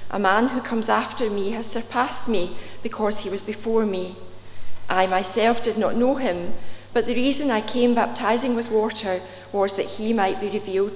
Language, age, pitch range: English, 40-59, 195-235 Hz